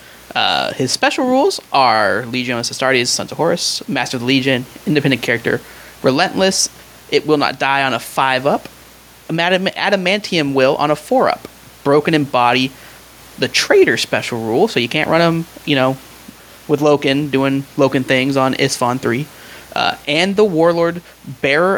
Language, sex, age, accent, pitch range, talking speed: English, male, 30-49, American, 130-180 Hz, 155 wpm